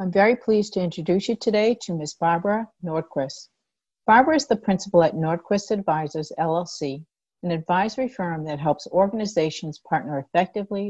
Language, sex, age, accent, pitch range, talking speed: English, female, 50-69, American, 155-200 Hz, 150 wpm